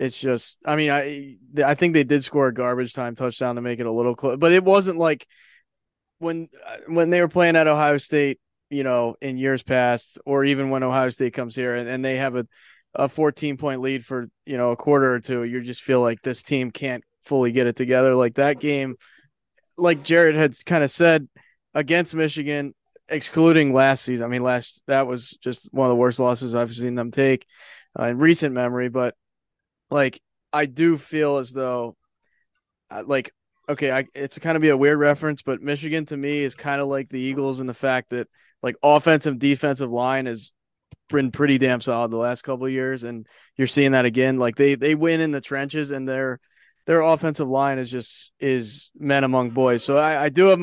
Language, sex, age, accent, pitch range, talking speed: English, male, 20-39, American, 125-150 Hz, 210 wpm